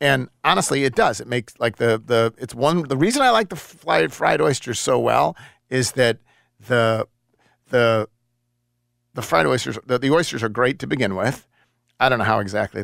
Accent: American